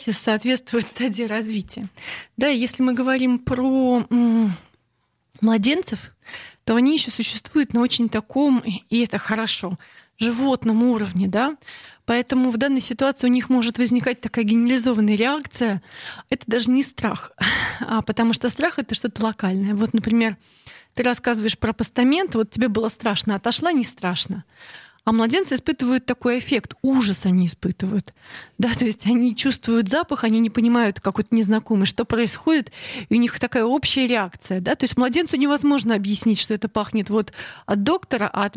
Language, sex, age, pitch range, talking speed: Russian, female, 30-49, 215-255 Hz, 150 wpm